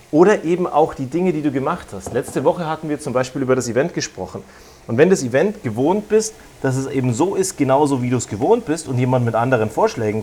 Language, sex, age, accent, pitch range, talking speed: German, male, 30-49, German, 120-175 Hz, 240 wpm